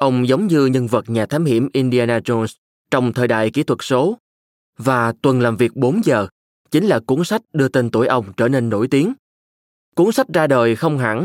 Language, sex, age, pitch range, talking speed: Vietnamese, male, 20-39, 115-140 Hz, 215 wpm